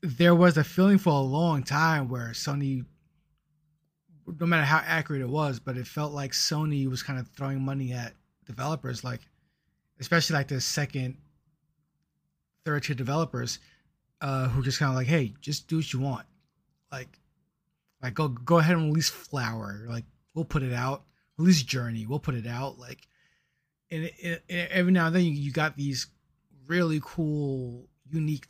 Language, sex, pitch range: English, male, 130-165 Hz